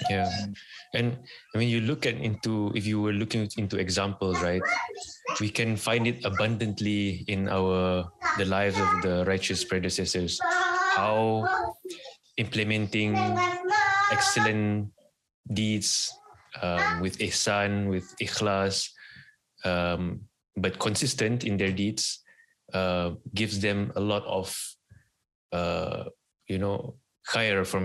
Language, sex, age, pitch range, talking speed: English, male, 20-39, 95-110 Hz, 115 wpm